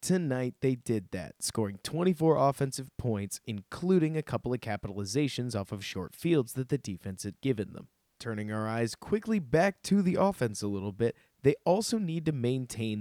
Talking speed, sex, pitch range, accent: 180 wpm, male, 105-145 Hz, American